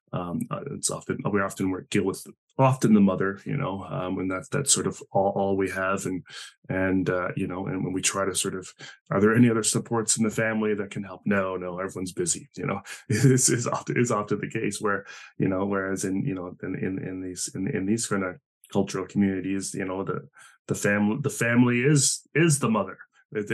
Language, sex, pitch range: English, male, 95-120 Hz